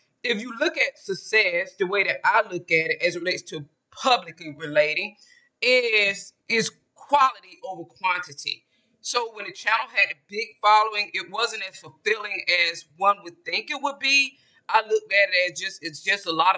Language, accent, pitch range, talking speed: English, American, 185-265 Hz, 190 wpm